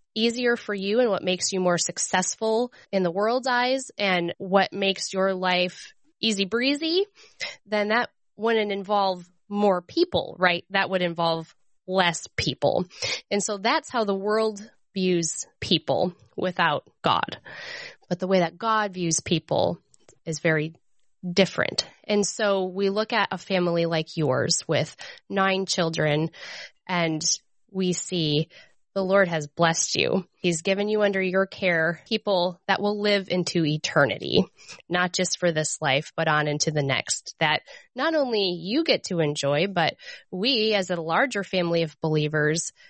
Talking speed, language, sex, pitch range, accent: 150 wpm, English, female, 170-215 Hz, American